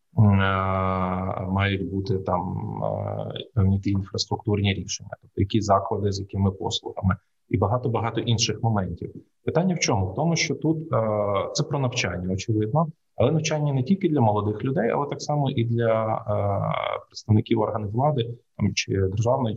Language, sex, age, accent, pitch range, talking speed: Ukrainian, male, 30-49, native, 100-125 Hz, 140 wpm